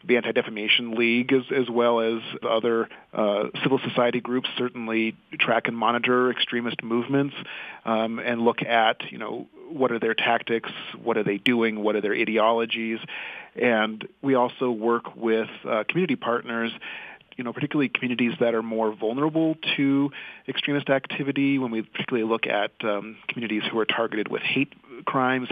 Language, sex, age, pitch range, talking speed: English, male, 30-49, 110-125 Hz, 160 wpm